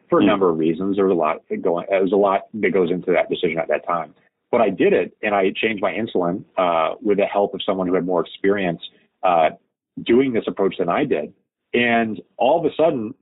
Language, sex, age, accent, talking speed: English, male, 30-49, American, 240 wpm